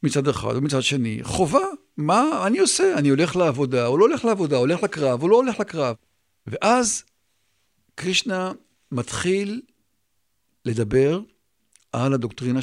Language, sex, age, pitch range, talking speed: Hebrew, male, 50-69, 120-185 Hz, 135 wpm